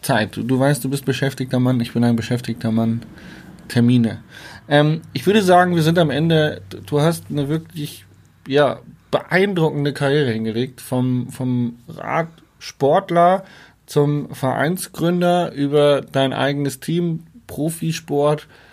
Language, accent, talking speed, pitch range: German, German, 130 wpm, 120-145 Hz